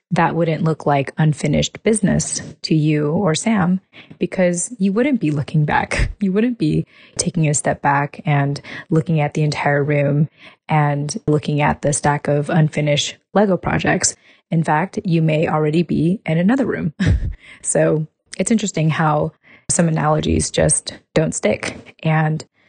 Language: English